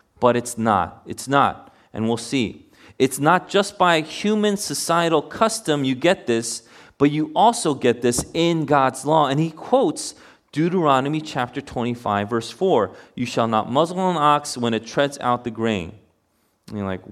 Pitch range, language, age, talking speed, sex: 110-145 Hz, English, 30-49, 170 wpm, male